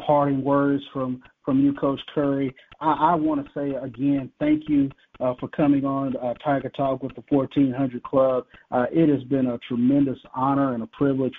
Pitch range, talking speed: 130-160 Hz, 185 wpm